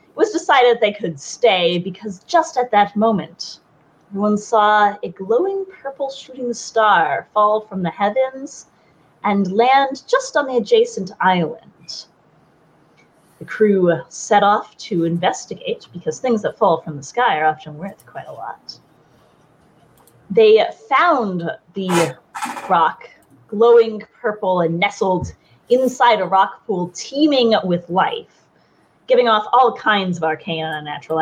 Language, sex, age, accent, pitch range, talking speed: English, female, 30-49, American, 175-260 Hz, 135 wpm